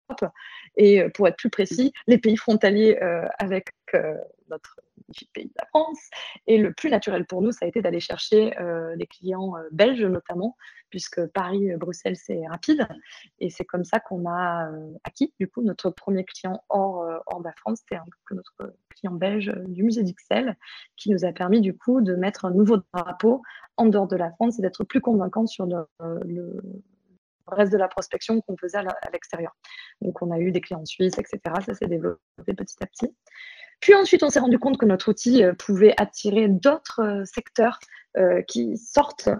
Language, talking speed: French, 190 wpm